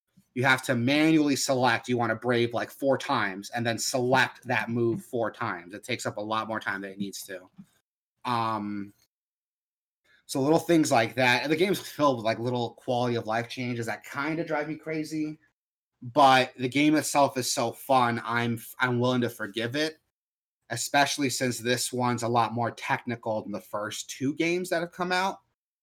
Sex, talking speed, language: male, 195 wpm, English